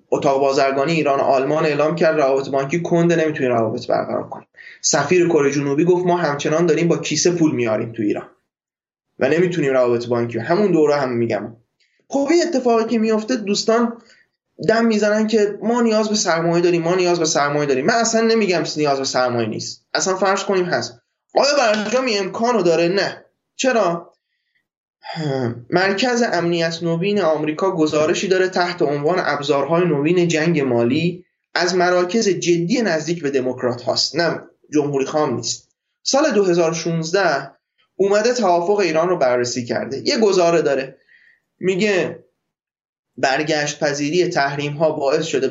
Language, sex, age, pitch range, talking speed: Persian, male, 20-39, 140-195 Hz, 150 wpm